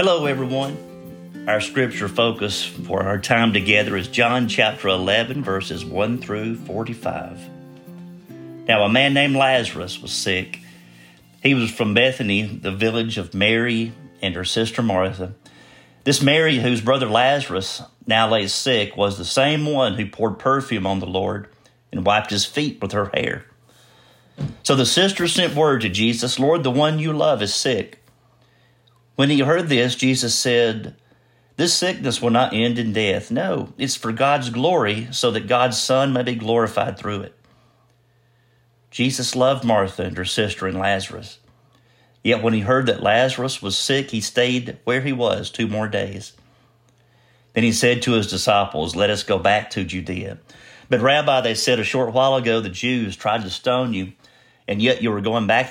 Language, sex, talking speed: English, male, 170 wpm